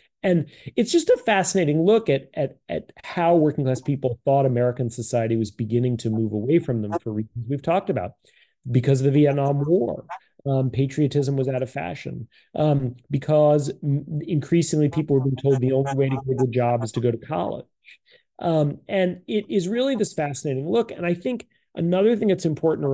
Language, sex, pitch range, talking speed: English, male, 120-165 Hz, 200 wpm